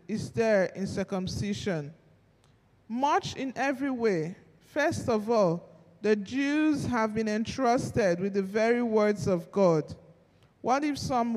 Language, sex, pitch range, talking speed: English, male, 185-235 Hz, 130 wpm